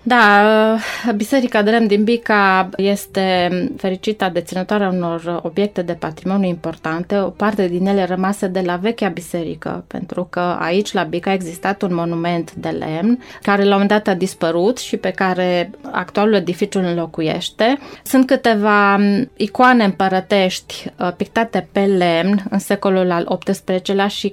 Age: 20-39